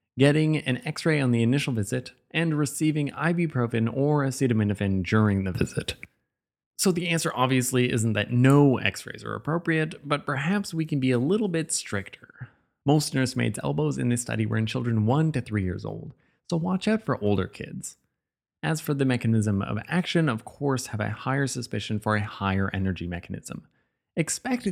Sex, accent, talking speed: male, American, 175 wpm